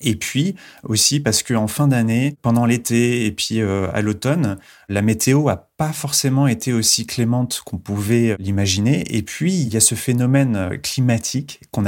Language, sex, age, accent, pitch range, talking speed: French, male, 30-49, French, 95-120 Hz, 170 wpm